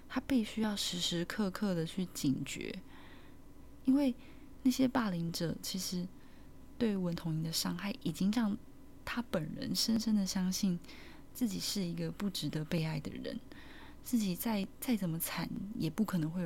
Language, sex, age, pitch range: Chinese, female, 20-39, 165-215 Hz